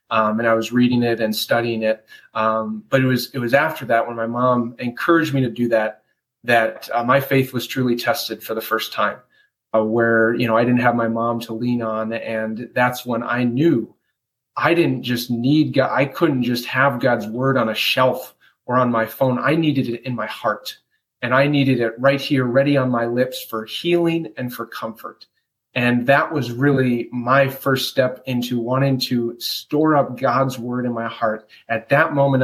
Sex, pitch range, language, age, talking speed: male, 115-135 Hz, English, 30-49, 205 wpm